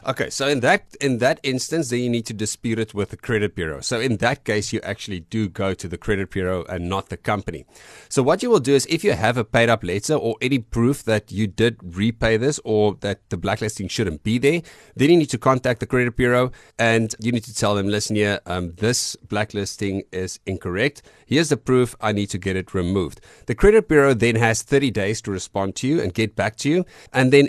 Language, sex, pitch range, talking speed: English, male, 95-125 Hz, 240 wpm